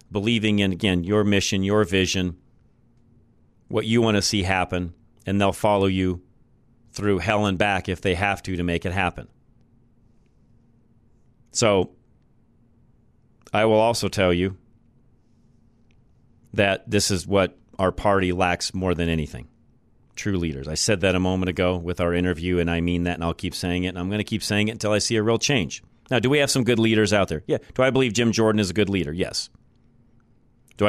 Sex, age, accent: male, 40-59, American